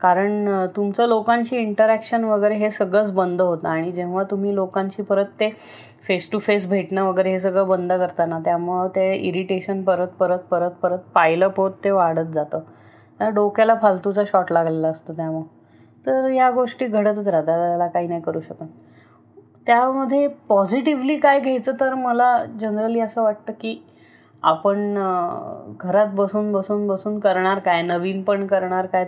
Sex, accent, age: female, native, 20-39